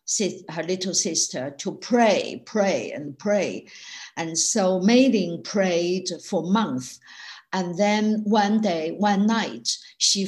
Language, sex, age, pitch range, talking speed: English, female, 60-79, 160-210 Hz, 125 wpm